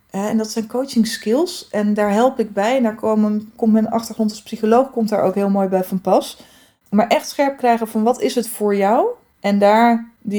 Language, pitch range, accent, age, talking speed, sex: Dutch, 195-230 Hz, Dutch, 20-39, 220 wpm, female